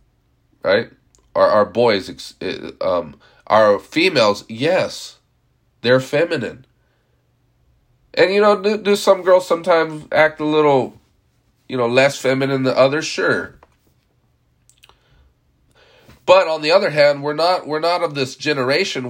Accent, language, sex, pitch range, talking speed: American, English, male, 115-140 Hz, 125 wpm